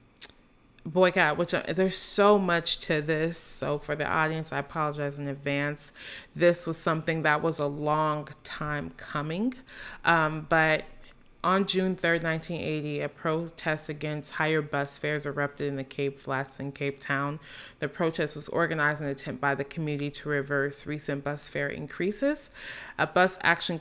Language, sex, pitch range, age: English, female, 145-170 Hz, 20-39